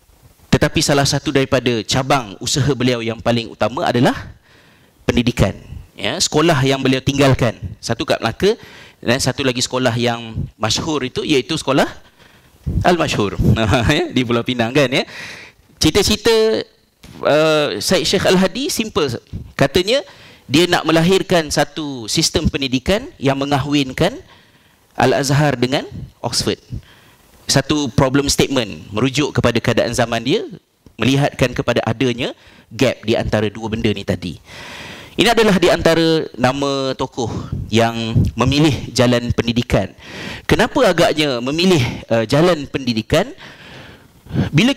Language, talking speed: Malay, 115 wpm